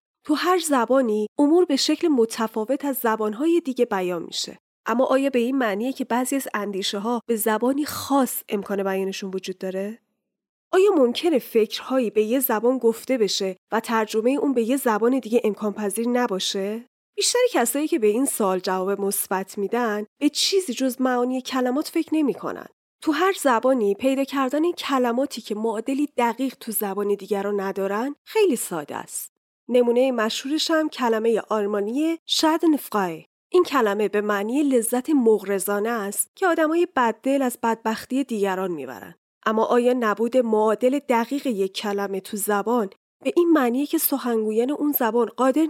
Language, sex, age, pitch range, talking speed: Persian, female, 10-29, 210-275 Hz, 155 wpm